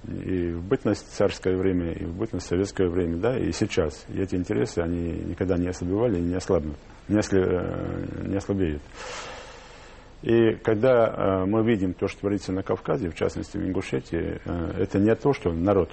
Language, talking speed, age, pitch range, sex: Russian, 165 wpm, 40-59, 85-105 Hz, male